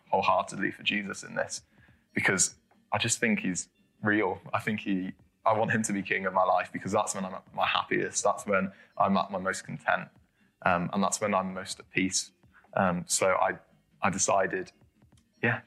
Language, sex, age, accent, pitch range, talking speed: English, male, 20-39, British, 95-115 Hz, 195 wpm